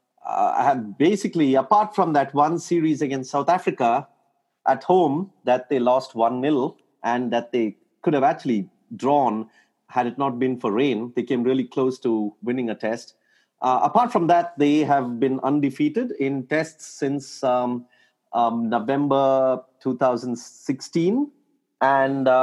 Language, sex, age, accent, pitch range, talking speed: English, male, 30-49, Indian, 120-150 Hz, 140 wpm